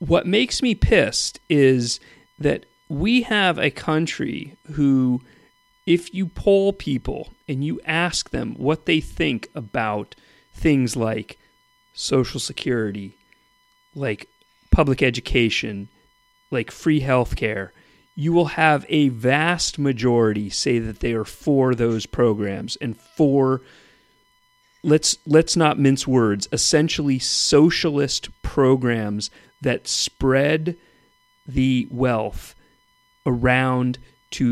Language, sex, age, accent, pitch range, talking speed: English, male, 40-59, American, 120-155 Hz, 110 wpm